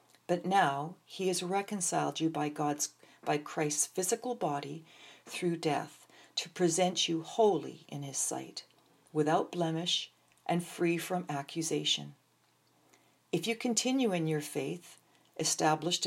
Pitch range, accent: 150-175 Hz, American